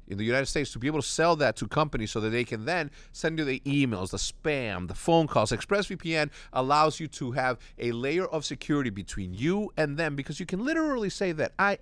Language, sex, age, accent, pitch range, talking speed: English, male, 30-49, American, 125-170 Hz, 235 wpm